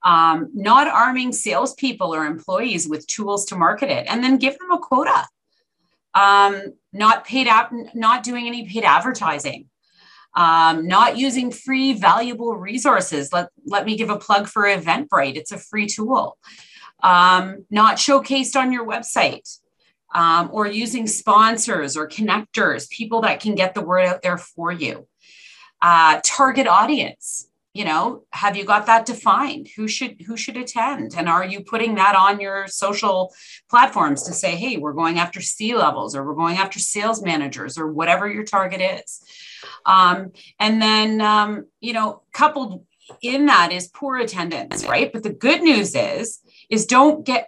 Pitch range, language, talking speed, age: 185-240 Hz, English, 165 wpm, 30-49